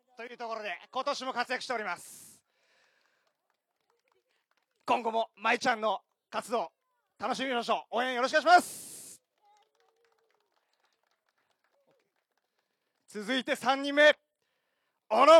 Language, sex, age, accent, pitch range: Japanese, male, 40-59, native, 235-325 Hz